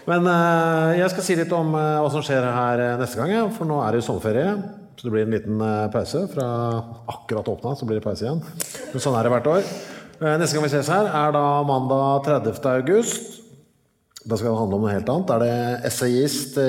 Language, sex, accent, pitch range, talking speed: English, male, Norwegian, 105-145 Hz, 210 wpm